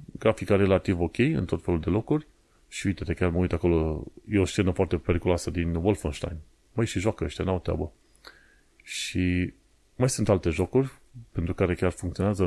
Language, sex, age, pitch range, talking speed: Romanian, male, 30-49, 90-115 Hz, 170 wpm